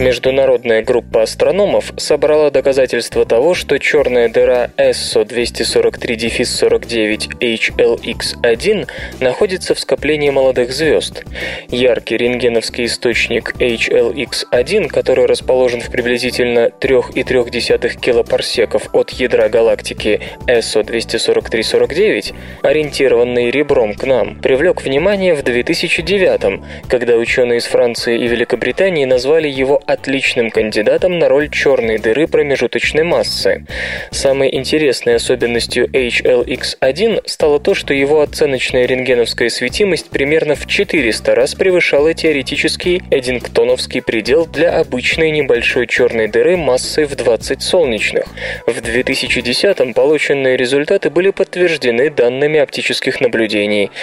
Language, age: Russian, 20-39